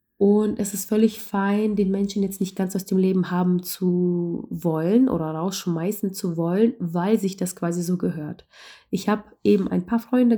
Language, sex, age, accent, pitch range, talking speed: German, female, 20-39, German, 180-215 Hz, 185 wpm